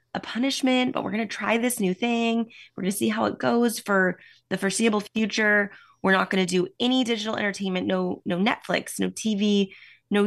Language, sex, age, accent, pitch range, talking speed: English, female, 20-39, American, 180-235 Hz, 205 wpm